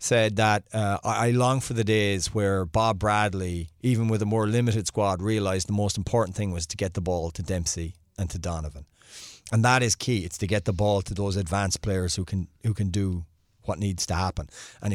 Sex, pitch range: male, 90-115 Hz